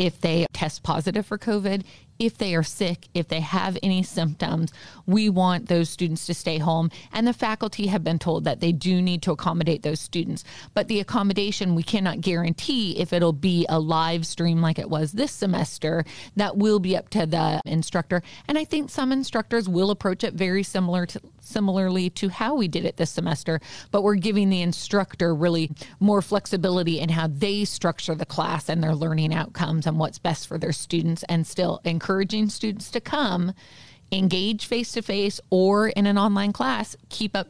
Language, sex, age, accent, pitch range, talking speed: English, female, 30-49, American, 165-200 Hz, 185 wpm